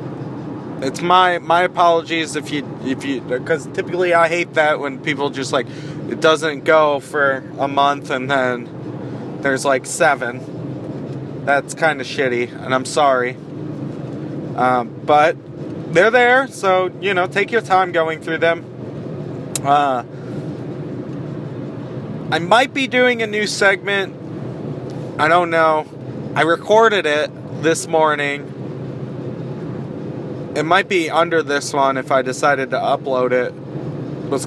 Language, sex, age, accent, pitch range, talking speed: English, male, 30-49, American, 140-170 Hz, 135 wpm